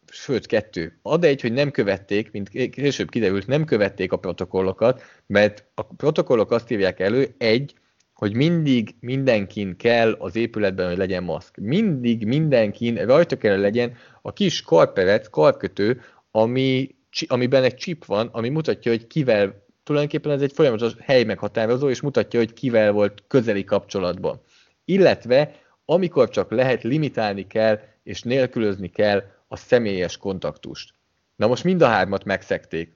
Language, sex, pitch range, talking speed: English, male, 100-130 Hz, 145 wpm